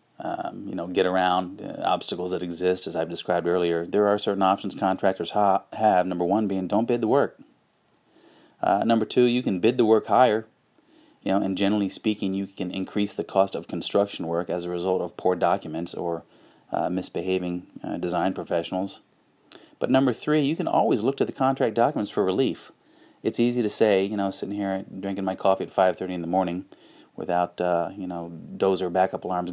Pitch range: 90-105 Hz